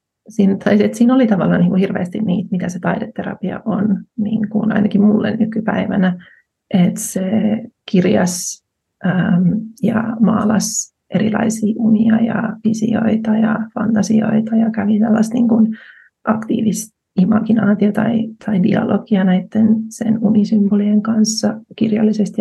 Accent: native